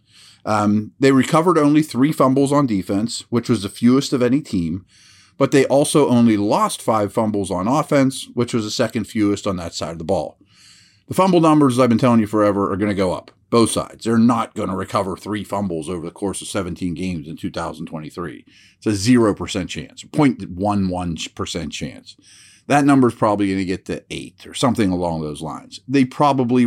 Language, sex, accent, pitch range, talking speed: English, male, American, 100-130 Hz, 195 wpm